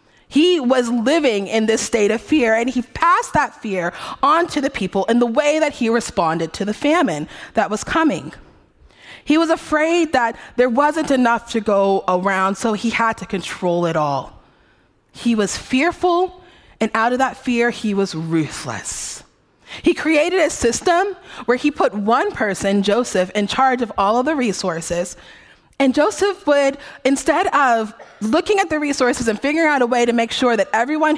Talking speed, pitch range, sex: 180 wpm, 195-295 Hz, female